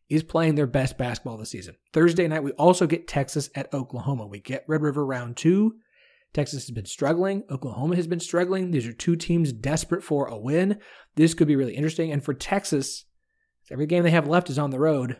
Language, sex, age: English, male, 30-49